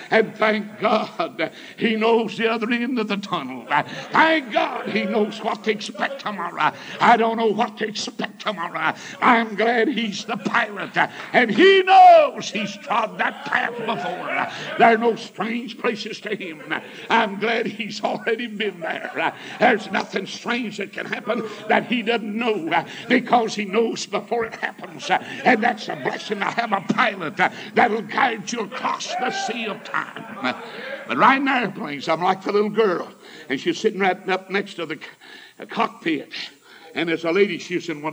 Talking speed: 180 wpm